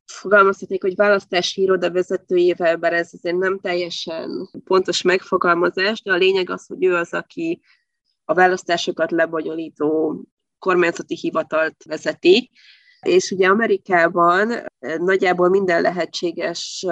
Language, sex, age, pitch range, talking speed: Hungarian, female, 20-39, 165-210 Hz, 115 wpm